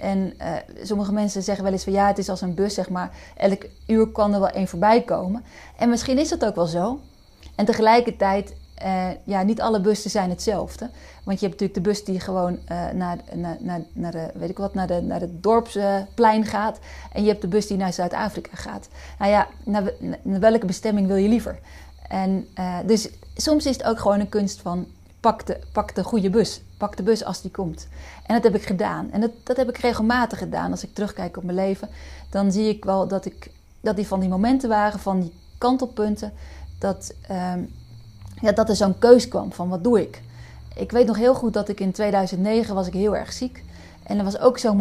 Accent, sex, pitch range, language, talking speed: Dutch, female, 185-220 Hz, Dutch, 220 wpm